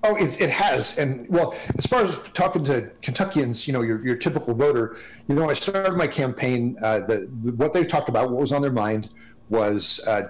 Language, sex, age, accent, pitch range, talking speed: English, male, 40-59, American, 115-145 Hz, 220 wpm